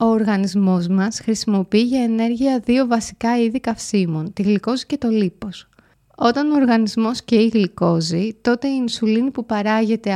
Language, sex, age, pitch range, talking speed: Greek, female, 30-49, 190-240 Hz, 150 wpm